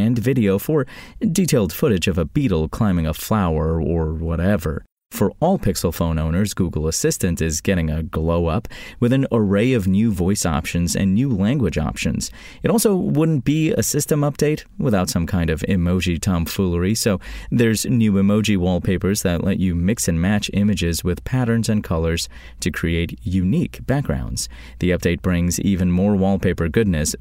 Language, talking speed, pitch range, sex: English, 165 wpm, 85-110 Hz, male